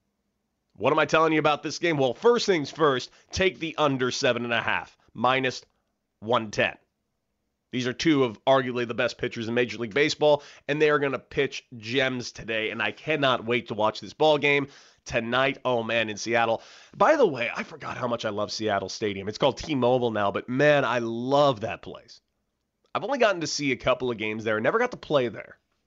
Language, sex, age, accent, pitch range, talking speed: English, male, 30-49, American, 115-150 Hz, 210 wpm